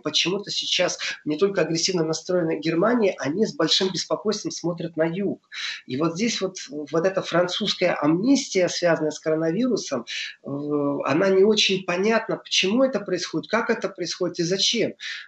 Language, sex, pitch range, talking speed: Russian, male, 160-200 Hz, 145 wpm